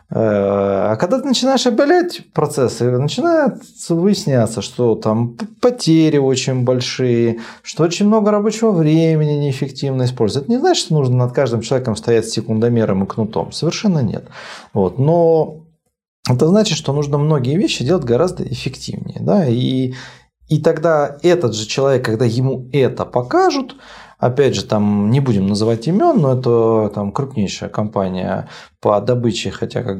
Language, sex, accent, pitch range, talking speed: Russian, male, native, 115-165 Hz, 145 wpm